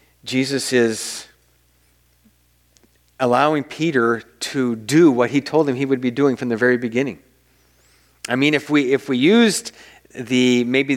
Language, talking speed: English, 150 wpm